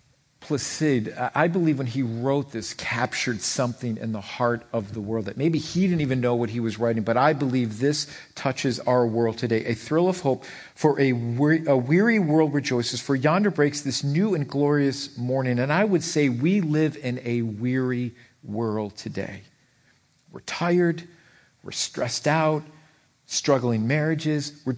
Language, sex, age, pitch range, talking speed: English, male, 50-69, 125-155 Hz, 165 wpm